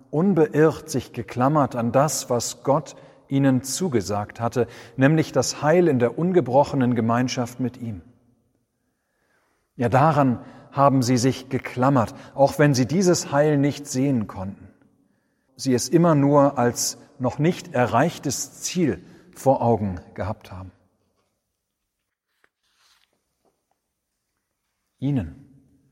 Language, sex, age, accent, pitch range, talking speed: German, male, 40-59, German, 120-145 Hz, 110 wpm